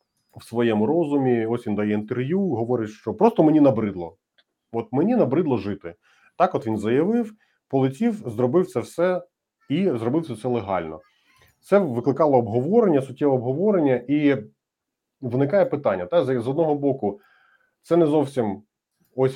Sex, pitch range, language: male, 100-140 Hz, Ukrainian